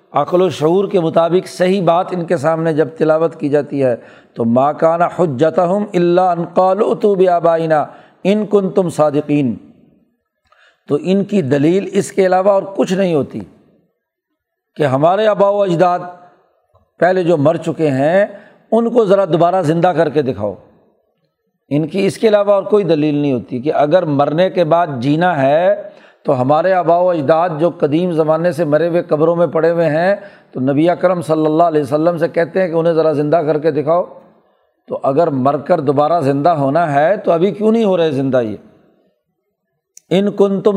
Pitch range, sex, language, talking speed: 155-190 Hz, male, Urdu, 180 wpm